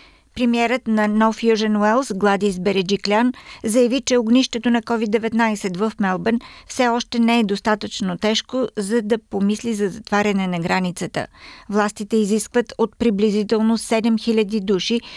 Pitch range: 200-230 Hz